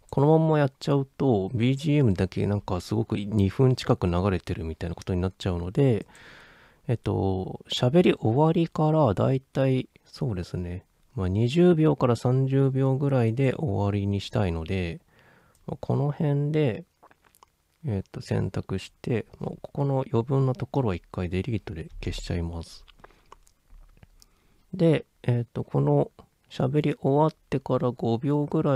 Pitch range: 95-135 Hz